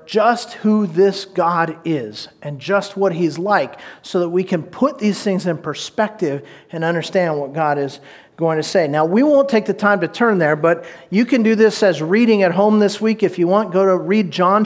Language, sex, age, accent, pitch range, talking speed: English, male, 40-59, American, 185-235 Hz, 220 wpm